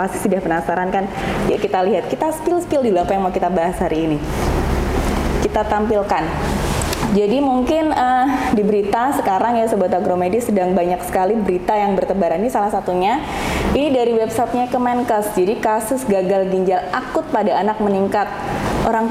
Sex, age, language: female, 20-39, Indonesian